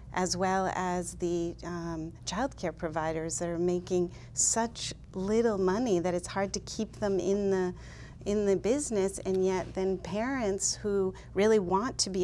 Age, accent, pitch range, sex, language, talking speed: 40-59, American, 175-205 Hz, female, English, 160 wpm